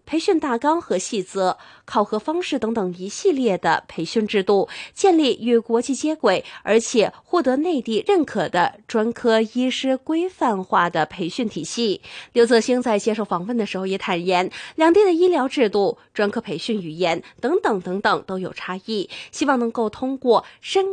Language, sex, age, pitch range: Chinese, female, 20-39, 200-285 Hz